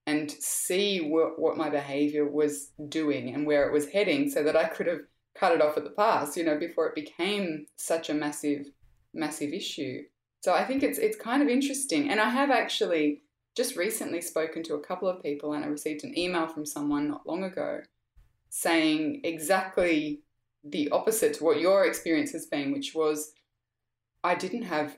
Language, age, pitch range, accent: English, 20-39, 145-170 Hz, Australian